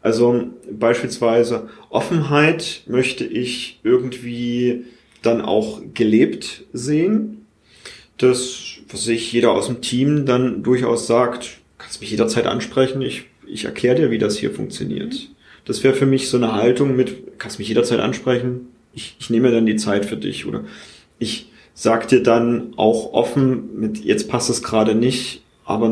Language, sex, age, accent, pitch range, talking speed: German, male, 30-49, German, 110-130 Hz, 150 wpm